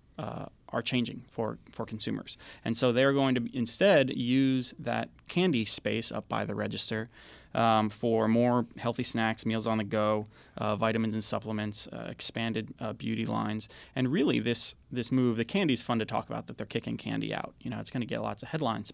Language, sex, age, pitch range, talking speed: English, male, 20-39, 110-120 Hz, 205 wpm